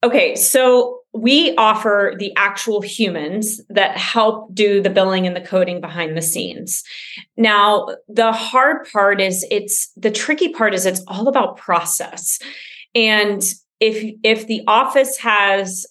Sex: female